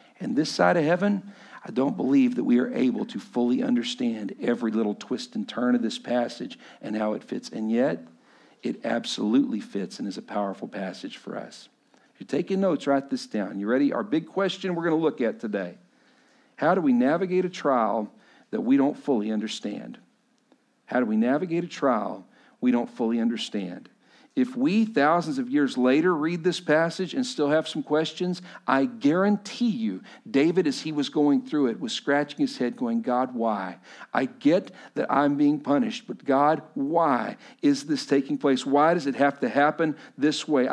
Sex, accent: male, American